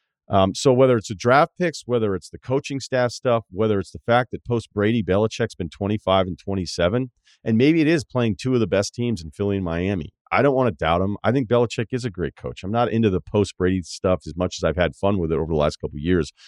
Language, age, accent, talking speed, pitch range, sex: English, 40-59, American, 270 wpm, 85-115 Hz, male